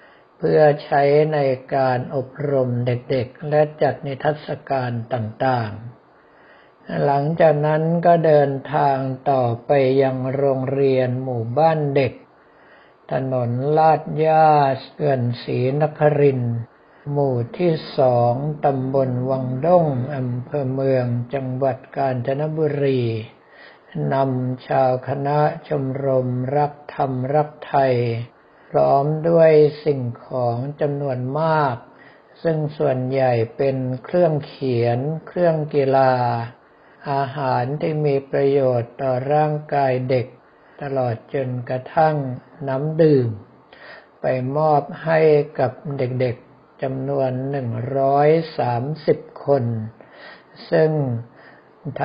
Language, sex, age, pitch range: Thai, male, 60-79, 130-150 Hz